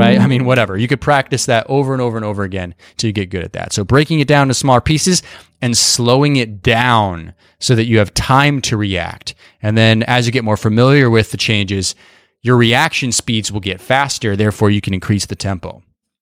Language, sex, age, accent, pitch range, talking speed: English, male, 20-39, American, 105-140 Hz, 220 wpm